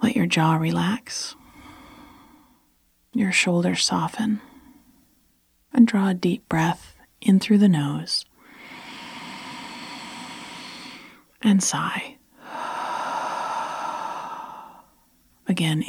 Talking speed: 70 wpm